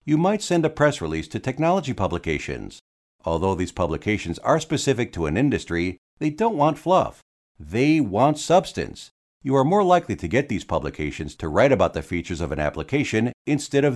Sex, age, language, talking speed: male, 50-69, English, 180 wpm